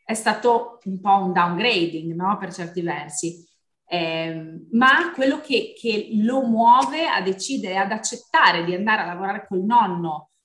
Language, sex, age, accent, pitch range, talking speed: Italian, female, 30-49, native, 180-250 Hz, 155 wpm